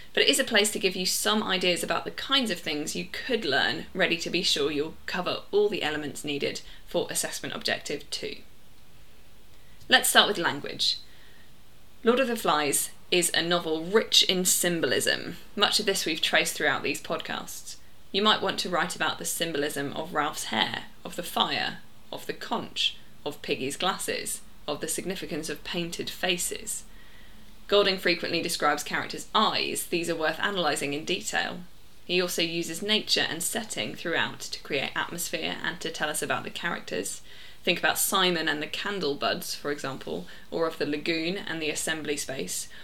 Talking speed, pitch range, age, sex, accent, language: 175 wpm, 160-205 Hz, 10-29, female, British, English